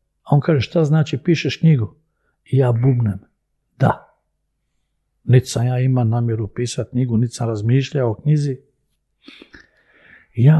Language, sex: Croatian, male